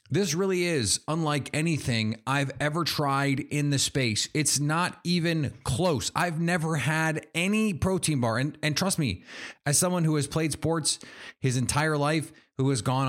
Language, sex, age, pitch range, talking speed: English, male, 30-49, 115-145 Hz, 170 wpm